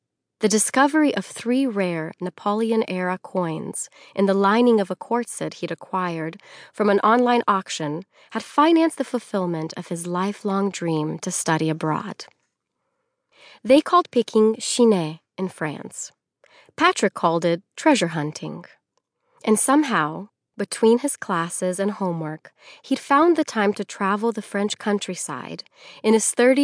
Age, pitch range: 30-49, 180-235 Hz